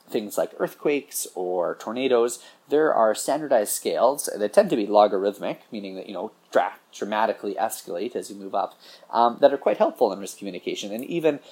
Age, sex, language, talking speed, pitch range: 30-49, male, English, 180 wpm, 95-120 Hz